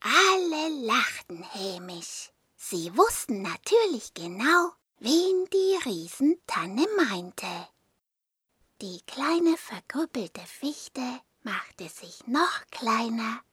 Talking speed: 85 wpm